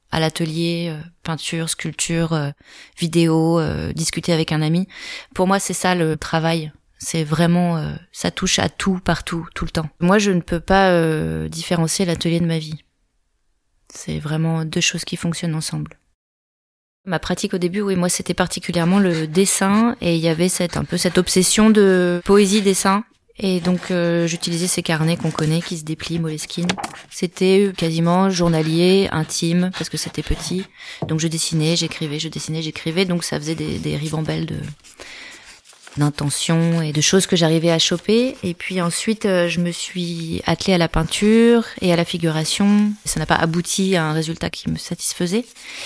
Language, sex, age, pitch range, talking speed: French, female, 20-39, 160-185 Hz, 175 wpm